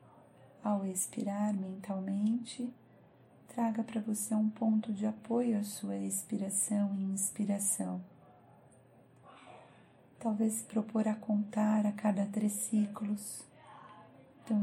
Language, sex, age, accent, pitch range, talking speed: Portuguese, female, 40-59, Brazilian, 200-220 Hz, 105 wpm